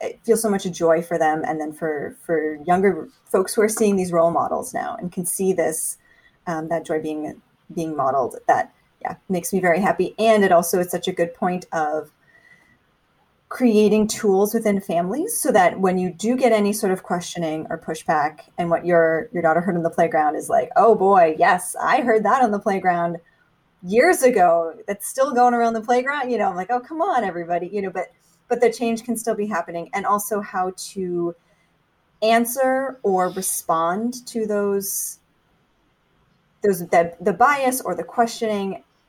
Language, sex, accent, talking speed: English, female, American, 190 wpm